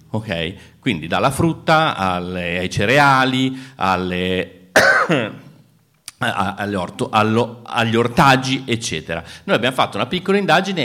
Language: Italian